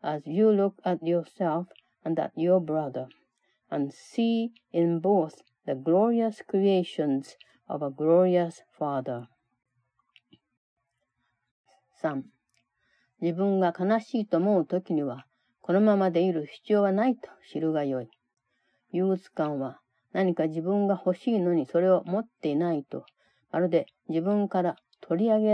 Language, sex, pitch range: Japanese, female, 155-200 Hz